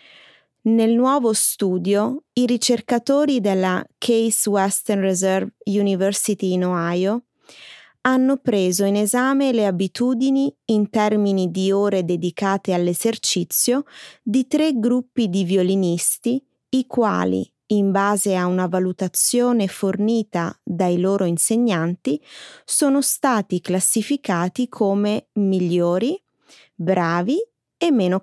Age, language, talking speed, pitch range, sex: 20-39, Italian, 100 wpm, 185-245 Hz, female